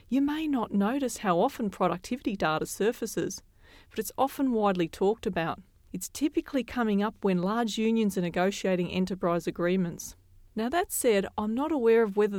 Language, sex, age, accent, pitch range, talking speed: English, female, 40-59, Australian, 175-220 Hz, 165 wpm